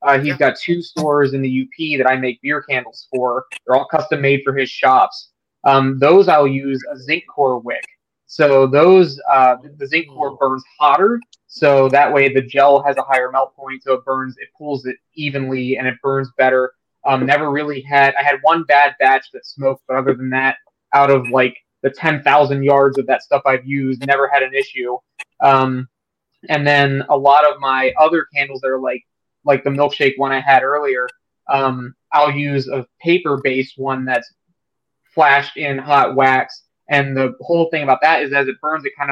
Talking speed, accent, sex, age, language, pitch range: 200 wpm, American, male, 20-39, English, 130-145 Hz